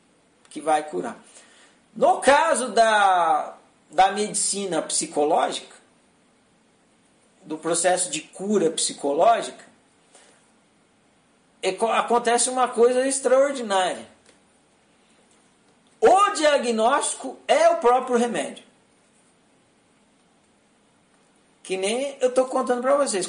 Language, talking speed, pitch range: Portuguese, 80 wpm, 190-260 Hz